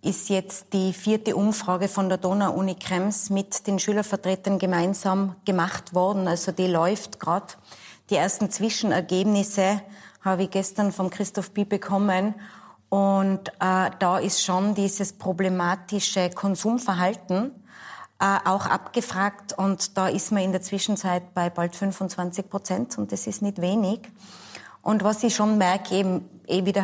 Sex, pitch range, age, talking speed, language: female, 185-205 Hz, 20-39, 145 wpm, German